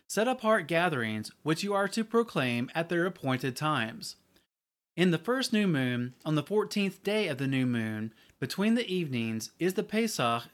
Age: 30-49